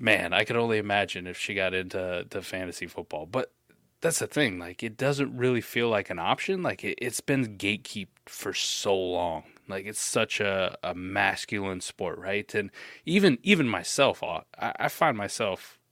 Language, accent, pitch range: English, American, 95-125 Hz